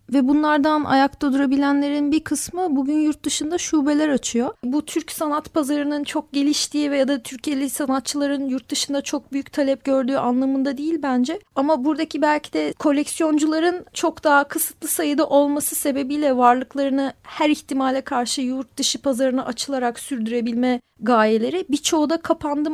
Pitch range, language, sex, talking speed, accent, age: 270-320 Hz, Turkish, female, 145 wpm, native, 40-59